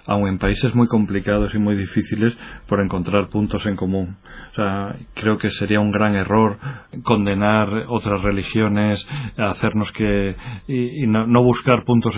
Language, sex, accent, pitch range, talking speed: Spanish, male, Spanish, 100-120 Hz, 160 wpm